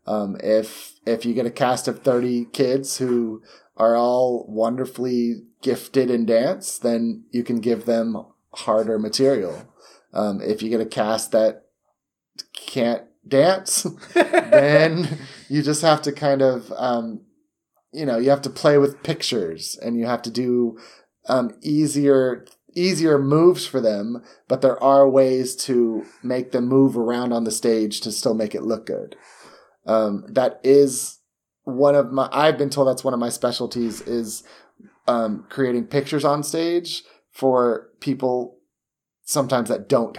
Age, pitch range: 30-49, 115-135 Hz